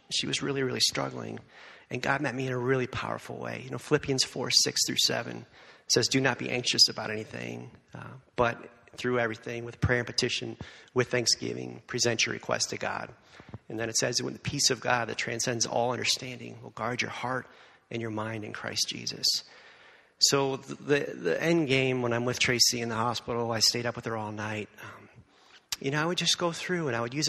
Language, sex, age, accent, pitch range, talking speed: English, male, 40-59, American, 115-140 Hz, 215 wpm